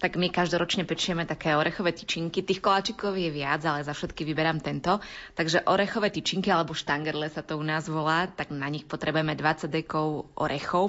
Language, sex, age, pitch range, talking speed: Slovak, female, 20-39, 150-190 Hz, 180 wpm